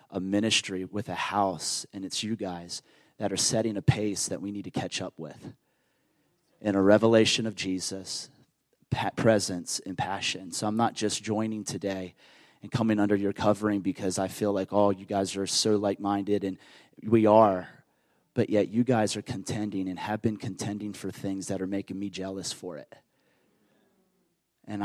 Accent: American